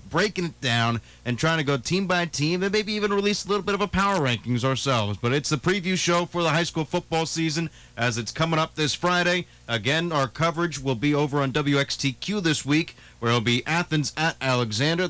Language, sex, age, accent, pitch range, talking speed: English, male, 30-49, American, 120-155 Hz, 220 wpm